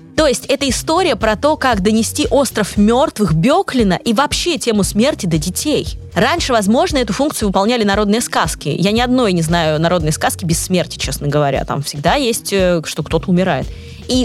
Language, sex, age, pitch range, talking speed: Russian, female, 20-39, 180-270 Hz, 175 wpm